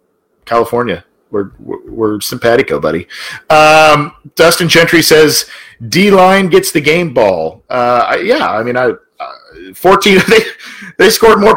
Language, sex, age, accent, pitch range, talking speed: English, male, 40-59, American, 110-165 Hz, 145 wpm